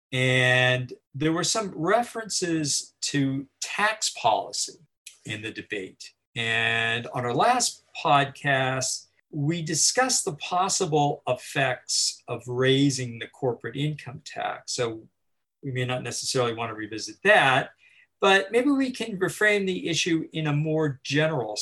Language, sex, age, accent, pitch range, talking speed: English, male, 50-69, American, 120-170 Hz, 130 wpm